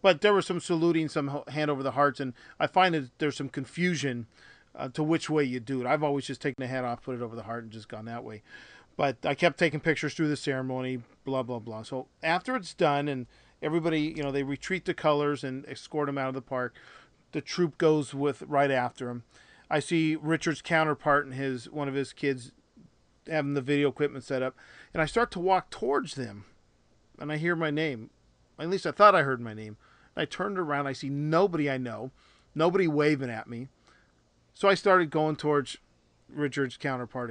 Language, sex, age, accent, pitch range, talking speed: English, male, 40-59, American, 130-165 Hz, 215 wpm